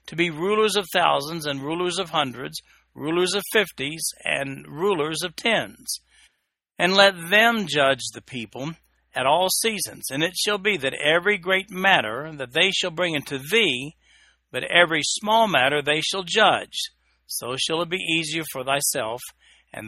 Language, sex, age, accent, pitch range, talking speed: English, male, 60-79, American, 135-180 Hz, 165 wpm